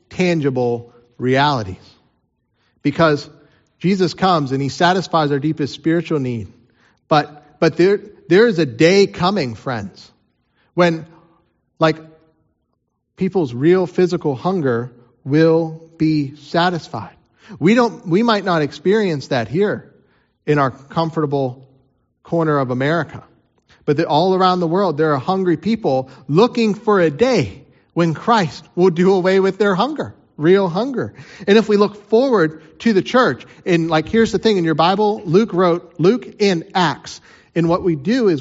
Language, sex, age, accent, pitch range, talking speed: English, male, 40-59, American, 155-205 Hz, 145 wpm